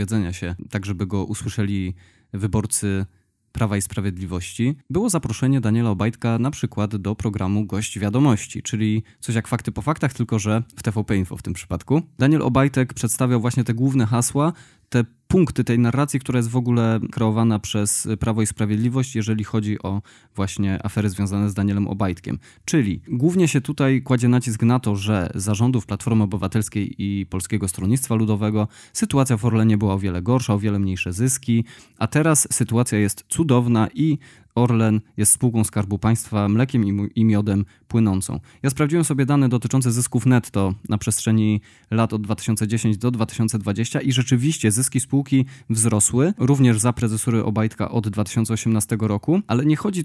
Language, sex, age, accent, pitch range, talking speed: Polish, male, 20-39, native, 105-125 Hz, 160 wpm